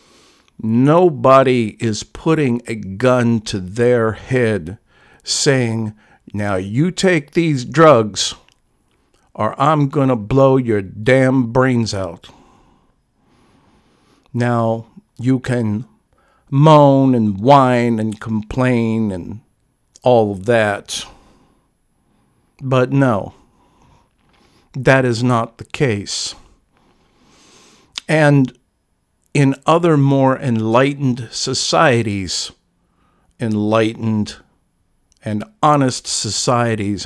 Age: 50-69